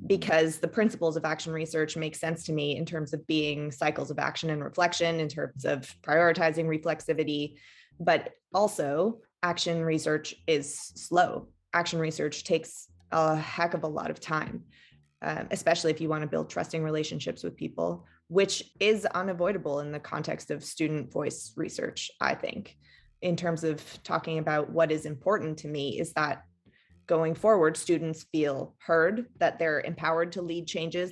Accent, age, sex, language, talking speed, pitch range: American, 20-39, female, English, 165 wpm, 150-170 Hz